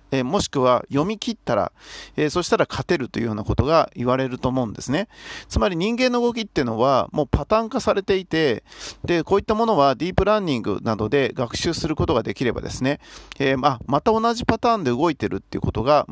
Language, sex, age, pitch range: Japanese, male, 40-59, 125-195 Hz